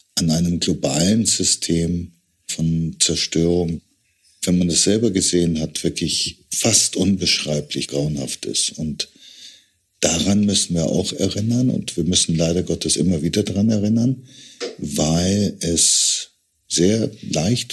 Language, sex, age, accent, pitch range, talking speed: German, male, 50-69, German, 85-110 Hz, 120 wpm